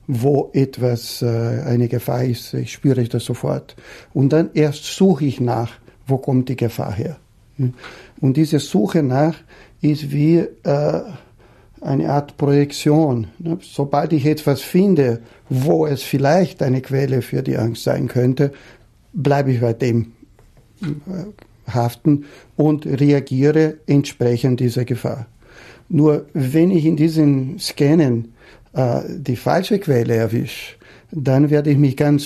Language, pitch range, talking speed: English, 120-150 Hz, 130 wpm